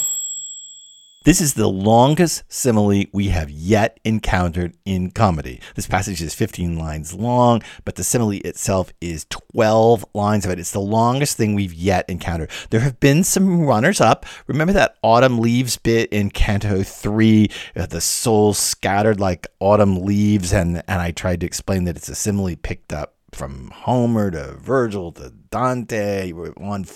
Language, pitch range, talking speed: English, 90-115 Hz, 160 wpm